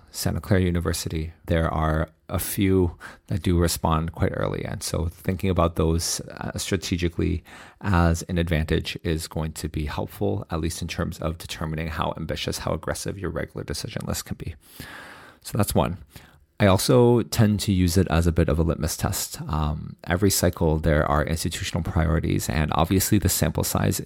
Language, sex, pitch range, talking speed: English, male, 80-95 Hz, 175 wpm